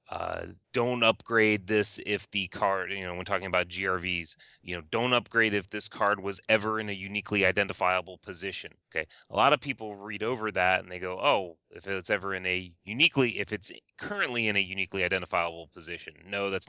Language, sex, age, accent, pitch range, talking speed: English, male, 30-49, American, 85-100 Hz, 200 wpm